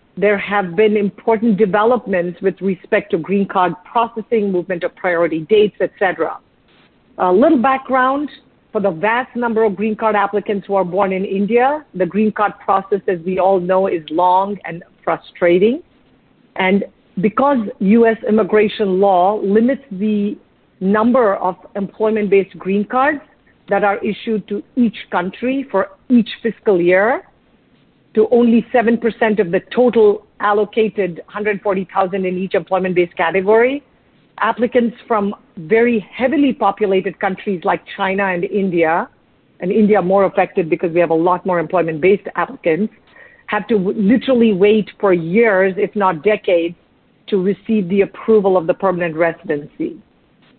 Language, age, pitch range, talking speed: English, 50-69, 190-225 Hz, 140 wpm